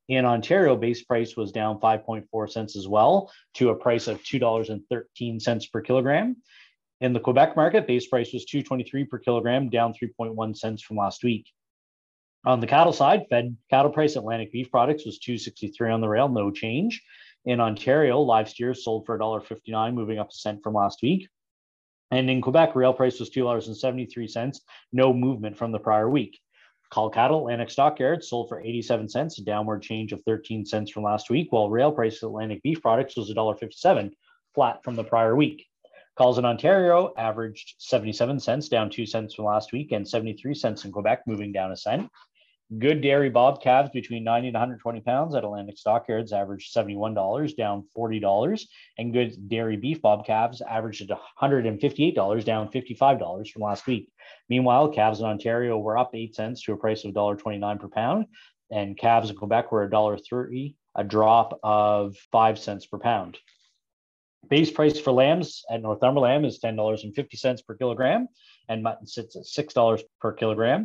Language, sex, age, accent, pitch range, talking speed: English, male, 20-39, American, 110-130 Hz, 170 wpm